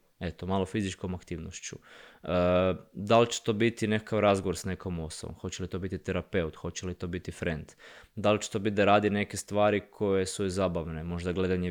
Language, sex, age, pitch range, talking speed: Croatian, male, 20-39, 90-110 Hz, 200 wpm